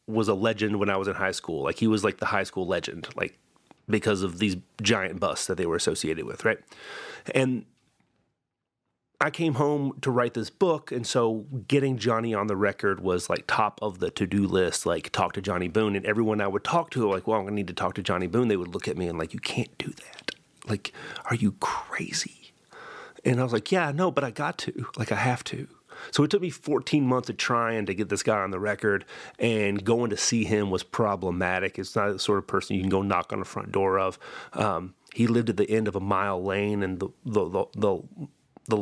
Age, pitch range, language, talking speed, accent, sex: 30-49, 95-115 Hz, English, 240 wpm, American, male